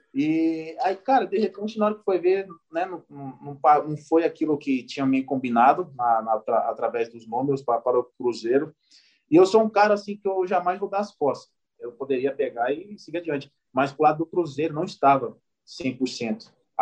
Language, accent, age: Portuguese, Brazilian, 20-39